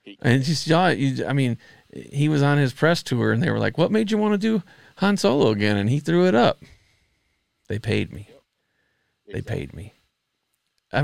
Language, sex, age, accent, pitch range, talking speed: English, male, 40-59, American, 110-150 Hz, 185 wpm